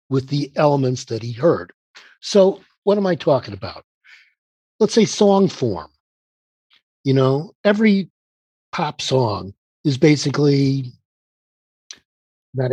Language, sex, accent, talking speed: English, male, American, 115 wpm